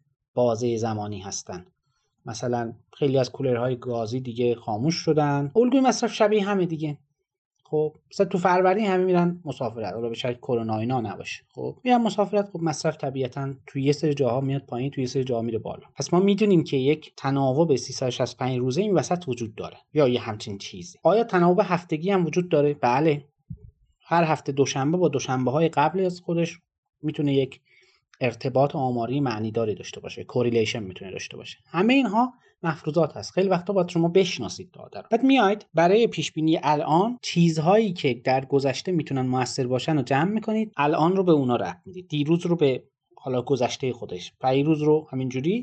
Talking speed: 175 wpm